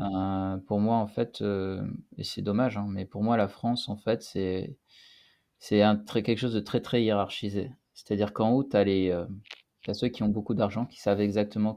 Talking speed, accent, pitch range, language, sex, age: 205 wpm, French, 100-120 Hz, French, male, 30-49